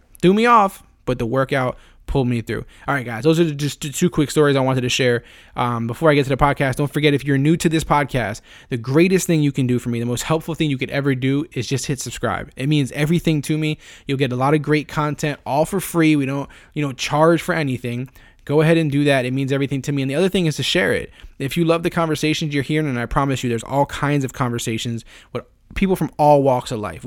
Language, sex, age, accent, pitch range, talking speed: English, male, 20-39, American, 125-160 Hz, 265 wpm